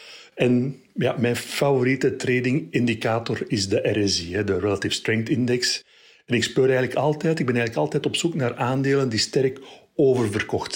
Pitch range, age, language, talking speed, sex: 105-125 Hz, 60-79, Dutch, 155 wpm, male